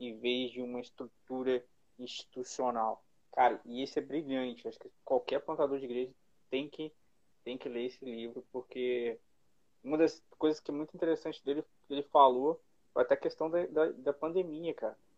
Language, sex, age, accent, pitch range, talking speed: Portuguese, male, 20-39, Brazilian, 120-150 Hz, 175 wpm